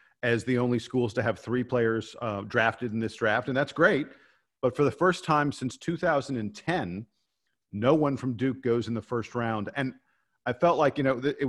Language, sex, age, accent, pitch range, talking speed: English, male, 50-69, American, 110-130 Hz, 205 wpm